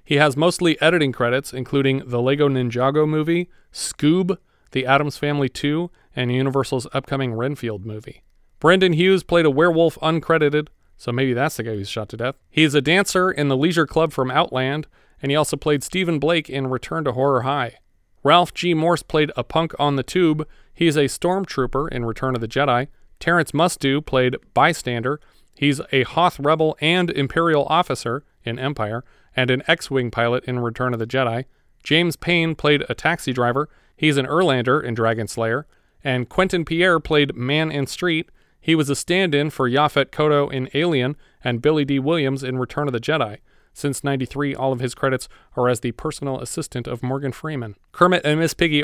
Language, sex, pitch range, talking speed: English, male, 125-160 Hz, 185 wpm